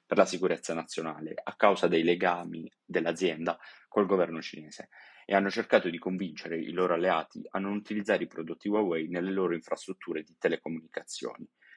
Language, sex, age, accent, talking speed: Italian, male, 30-49, native, 160 wpm